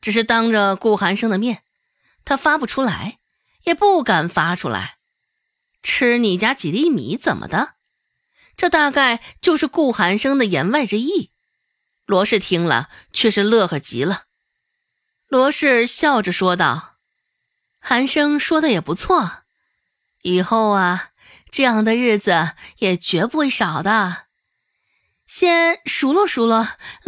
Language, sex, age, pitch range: Chinese, female, 20-39, 195-295 Hz